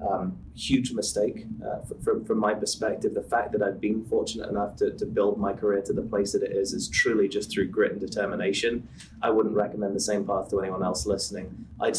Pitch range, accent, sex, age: 105-120 Hz, British, male, 20-39